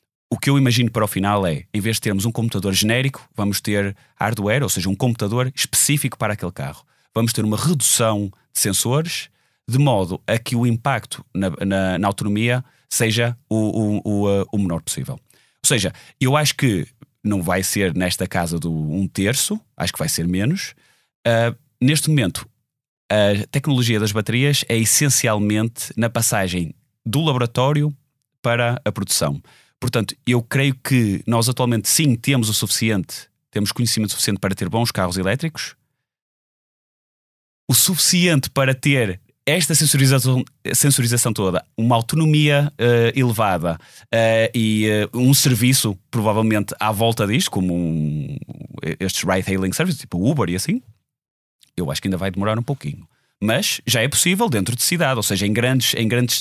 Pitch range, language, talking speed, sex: 100-130 Hz, Portuguese, 155 wpm, male